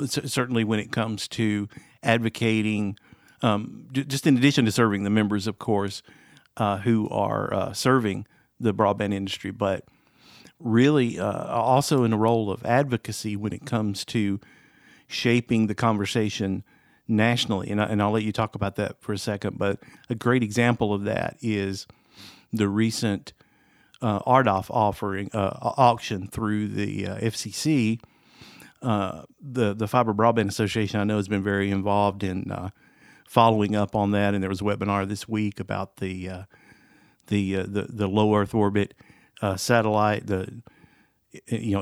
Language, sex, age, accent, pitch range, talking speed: English, male, 50-69, American, 100-115 Hz, 160 wpm